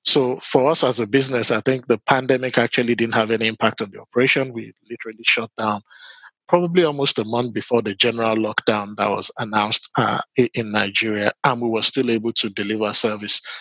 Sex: male